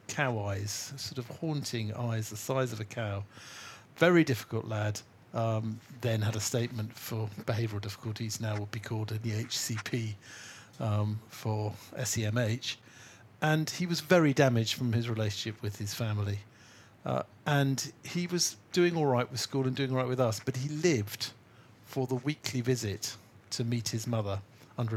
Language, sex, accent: English, male, British